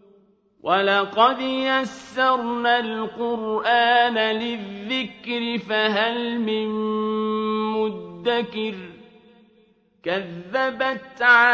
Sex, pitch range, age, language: male, 215-240 Hz, 40-59, Arabic